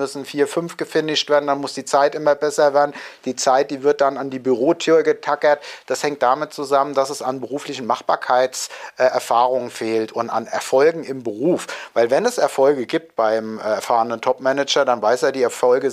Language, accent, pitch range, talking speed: German, German, 130-160 Hz, 185 wpm